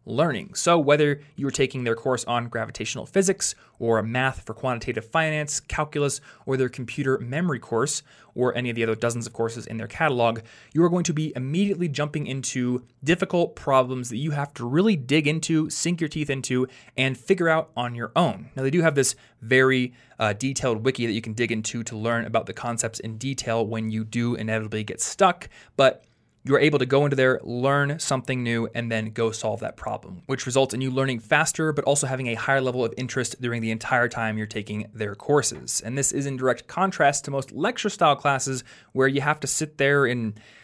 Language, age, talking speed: English, 20-39, 210 wpm